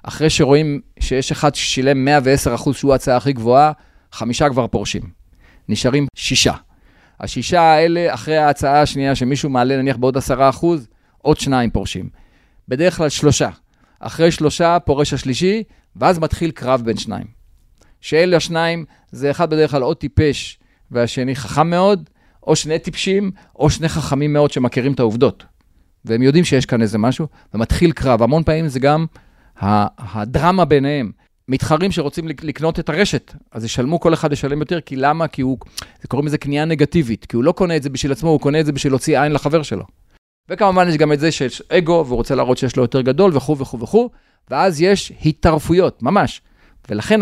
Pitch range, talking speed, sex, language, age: 125-165 Hz, 170 wpm, male, Hebrew, 40-59